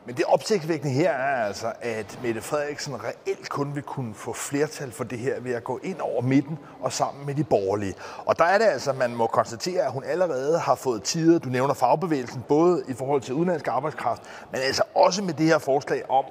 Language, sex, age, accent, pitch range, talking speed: Danish, male, 30-49, native, 135-175 Hz, 225 wpm